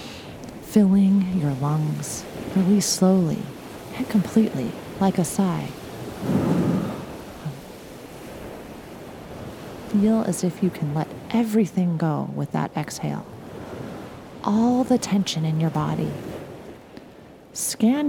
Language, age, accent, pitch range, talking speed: English, 30-49, American, 165-210 Hz, 95 wpm